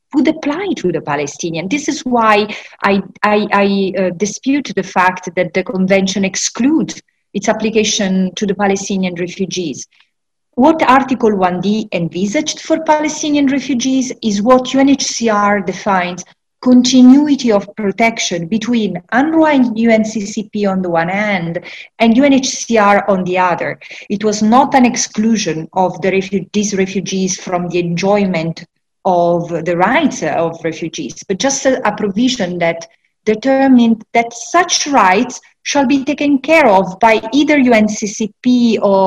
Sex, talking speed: female, 135 wpm